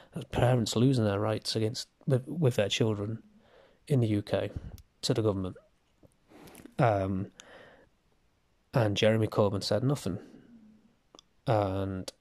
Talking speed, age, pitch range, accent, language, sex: 105 wpm, 20-39, 105-125 Hz, British, English, male